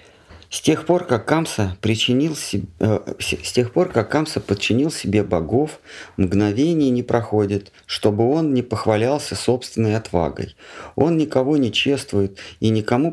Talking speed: 135 wpm